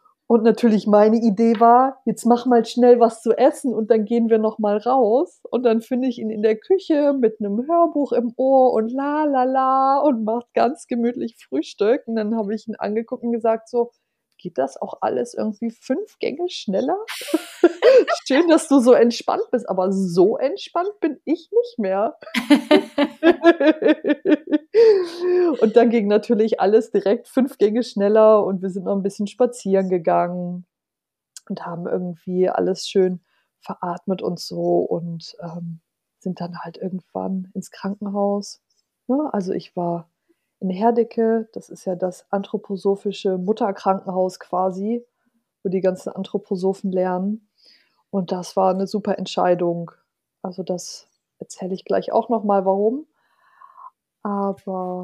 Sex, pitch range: female, 195-260 Hz